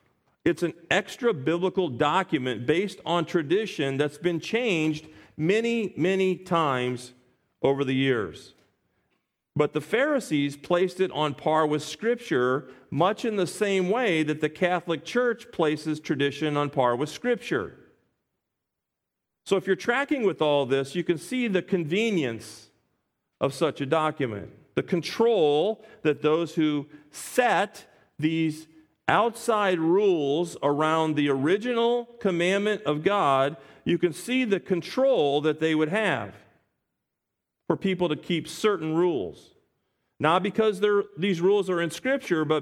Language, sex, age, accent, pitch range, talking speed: English, male, 40-59, American, 140-190 Hz, 135 wpm